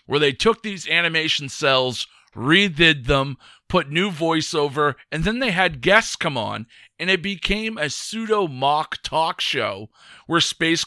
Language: English